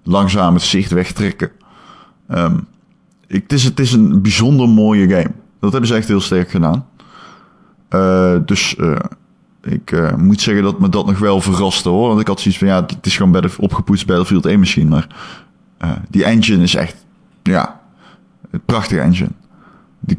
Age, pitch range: 20-39, 95-150 Hz